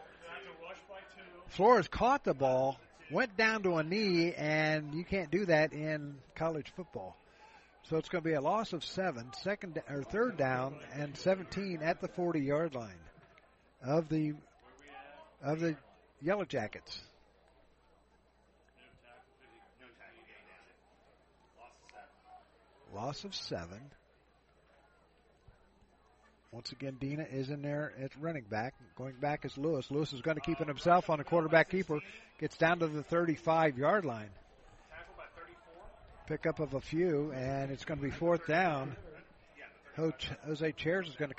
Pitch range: 135-170 Hz